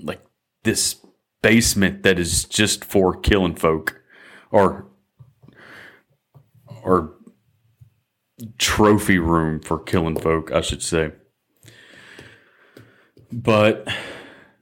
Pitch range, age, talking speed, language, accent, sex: 85-105 Hz, 30-49, 80 wpm, English, American, male